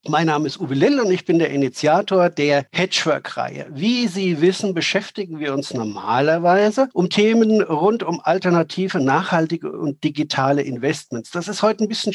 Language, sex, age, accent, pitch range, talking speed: German, male, 50-69, German, 145-190 Hz, 165 wpm